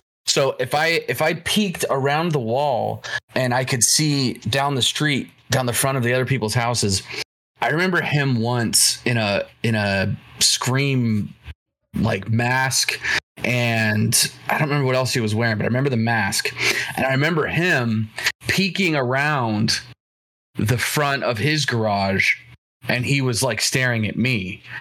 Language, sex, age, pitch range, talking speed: English, male, 20-39, 115-145 Hz, 160 wpm